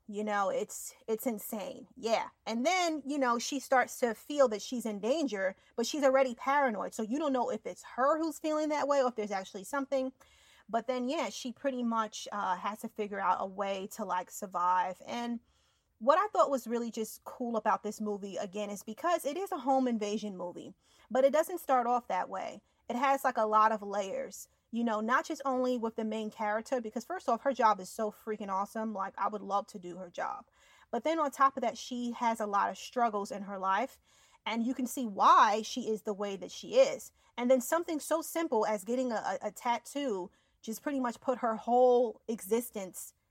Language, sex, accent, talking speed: English, female, American, 220 wpm